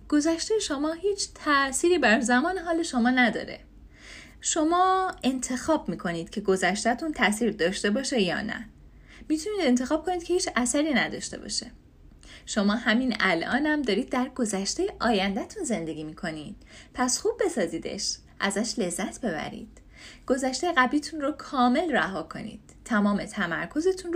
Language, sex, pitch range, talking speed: Persian, female, 200-300 Hz, 125 wpm